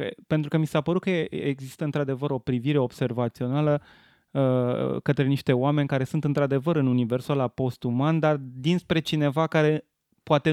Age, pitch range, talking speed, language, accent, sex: 20-39, 125-150 Hz, 150 wpm, Romanian, native, male